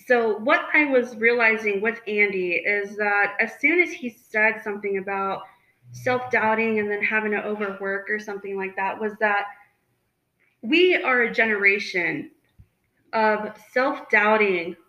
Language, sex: English, female